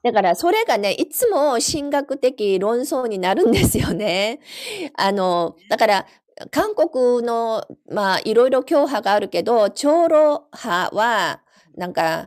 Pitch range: 175-245 Hz